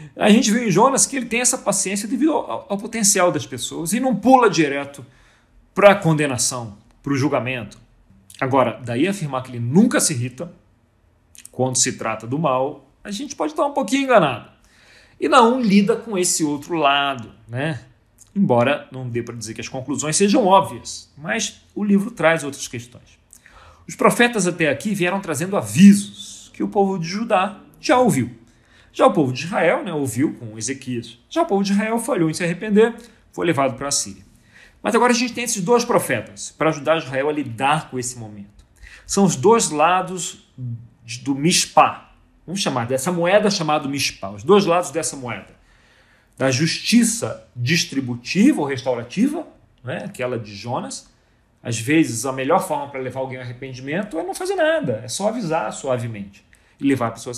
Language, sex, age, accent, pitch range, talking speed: Portuguese, male, 40-59, Brazilian, 120-195 Hz, 180 wpm